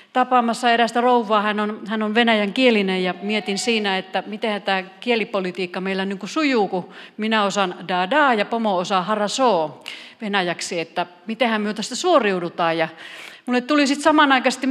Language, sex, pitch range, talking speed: Finnish, female, 190-255 Hz, 150 wpm